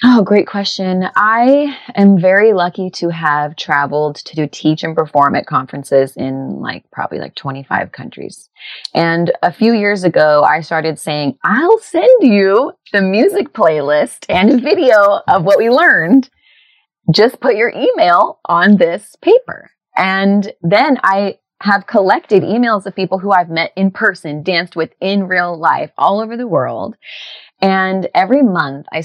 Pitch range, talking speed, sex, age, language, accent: 145-200 Hz, 155 wpm, female, 20-39, English, American